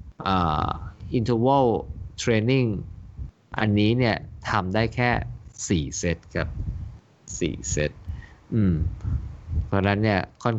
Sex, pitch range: male, 85-110 Hz